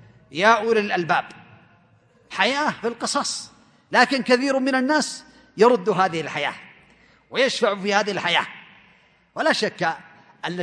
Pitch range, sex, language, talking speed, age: 180-270 Hz, male, Arabic, 115 wpm, 40-59